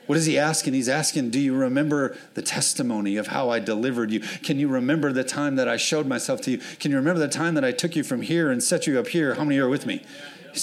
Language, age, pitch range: English, 40-59, 130-165 Hz